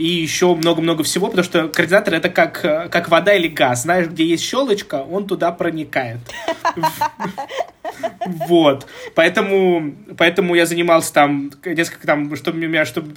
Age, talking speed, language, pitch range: 20-39, 140 wpm, Russian, 150-200 Hz